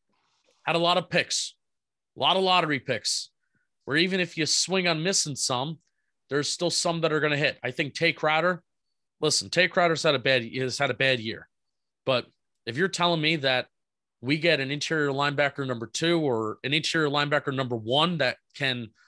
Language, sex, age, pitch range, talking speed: English, male, 30-49, 125-155 Hz, 200 wpm